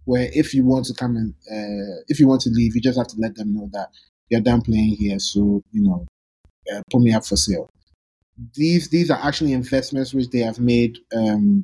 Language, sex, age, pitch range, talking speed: English, male, 30-49, 110-145 Hz, 225 wpm